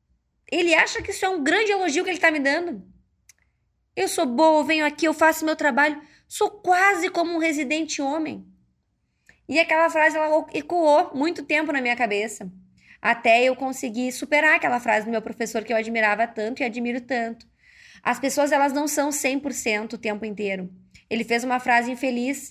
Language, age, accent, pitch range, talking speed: Portuguese, 20-39, Brazilian, 220-295 Hz, 185 wpm